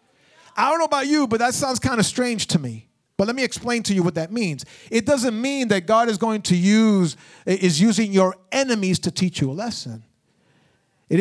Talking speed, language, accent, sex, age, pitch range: 220 wpm, English, American, male, 40-59, 195-260 Hz